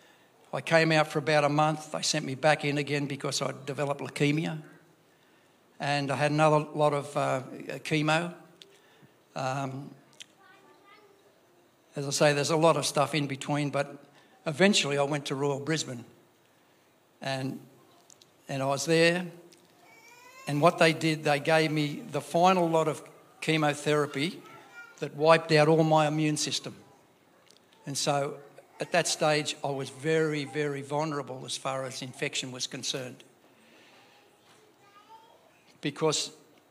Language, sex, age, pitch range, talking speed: English, male, 60-79, 140-160 Hz, 140 wpm